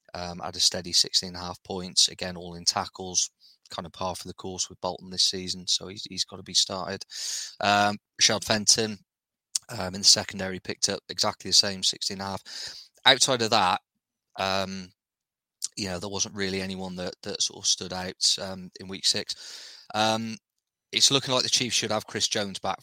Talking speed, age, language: 200 wpm, 20-39, English